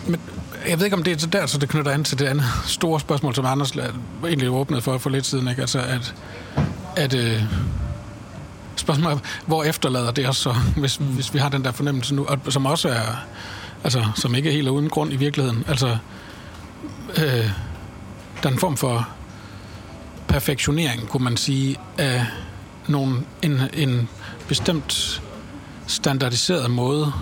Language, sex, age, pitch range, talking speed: Danish, male, 60-79, 110-145 Hz, 170 wpm